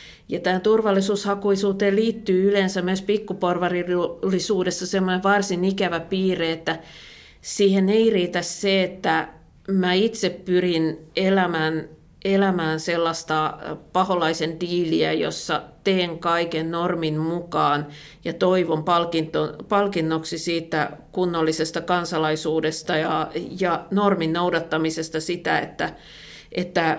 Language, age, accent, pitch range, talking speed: Finnish, 50-69, native, 160-190 Hz, 95 wpm